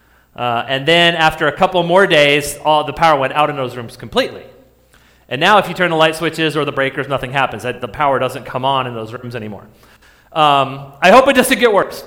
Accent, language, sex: American, English, male